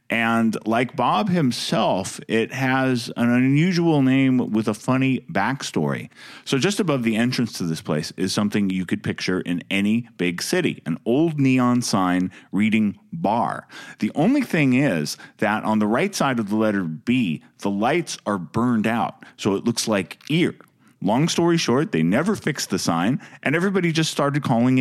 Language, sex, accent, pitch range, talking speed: English, male, American, 105-135 Hz, 175 wpm